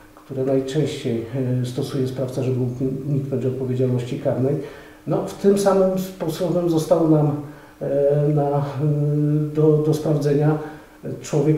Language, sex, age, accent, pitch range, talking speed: Polish, male, 50-69, native, 135-155 Hz, 115 wpm